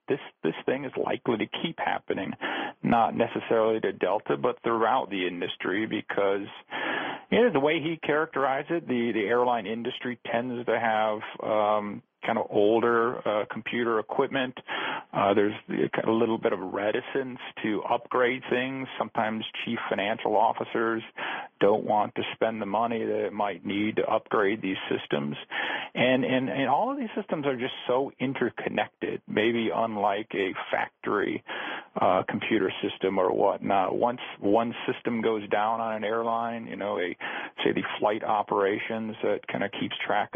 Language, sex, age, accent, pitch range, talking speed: English, male, 40-59, American, 110-130 Hz, 160 wpm